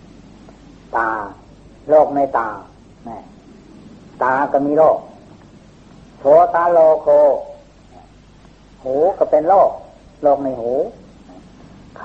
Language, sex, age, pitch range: Thai, female, 60-79, 130-160 Hz